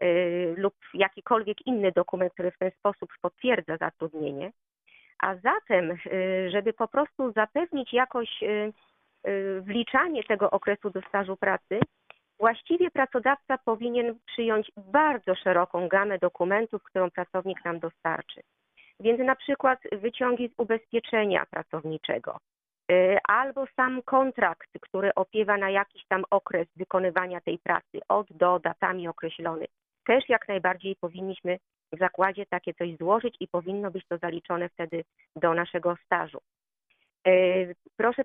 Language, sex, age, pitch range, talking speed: Polish, female, 40-59, 180-235 Hz, 120 wpm